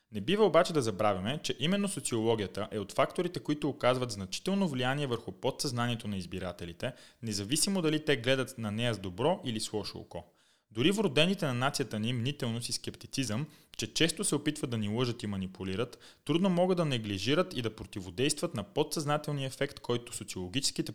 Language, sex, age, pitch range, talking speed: Bulgarian, male, 30-49, 110-155 Hz, 170 wpm